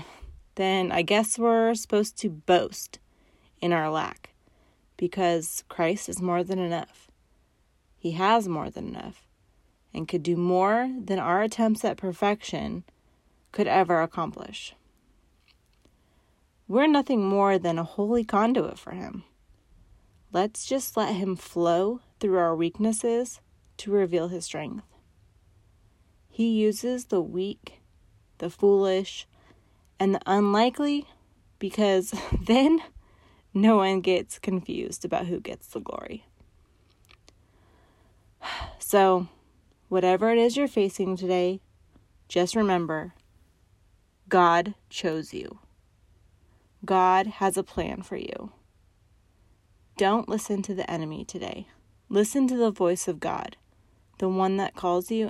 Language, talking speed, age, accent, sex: English, 120 wpm, 30-49, American, female